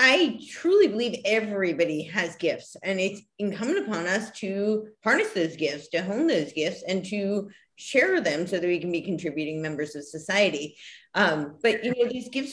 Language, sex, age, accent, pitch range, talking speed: English, female, 30-49, American, 175-220 Hz, 180 wpm